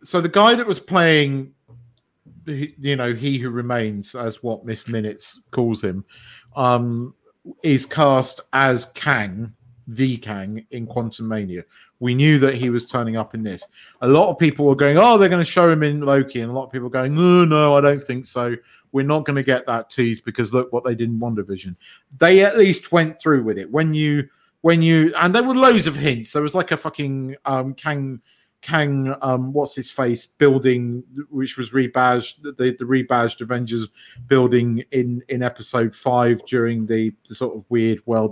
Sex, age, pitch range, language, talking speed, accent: male, 40-59, 115-150 Hz, English, 200 wpm, British